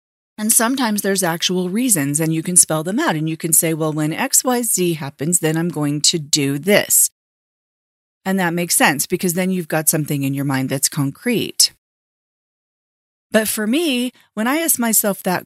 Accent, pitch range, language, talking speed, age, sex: American, 165-215 Hz, English, 190 wpm, 30-49, female